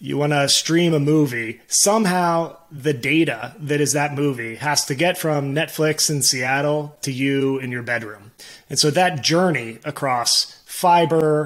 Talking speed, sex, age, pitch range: 160 wpm, male, 30-49, 135-160 Hz